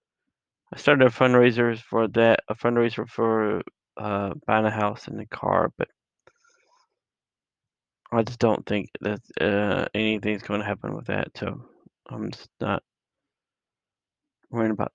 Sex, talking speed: male, 140 wpm